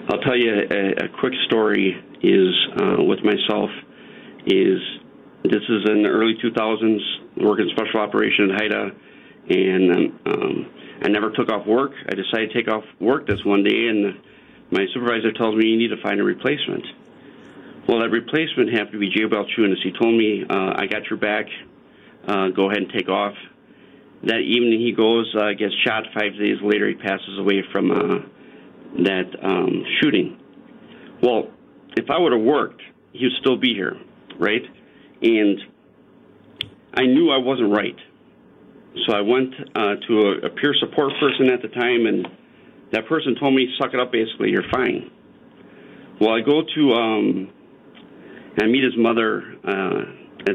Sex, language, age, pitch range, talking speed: male, English, 40-59, 105-120 Hz, 170 wpm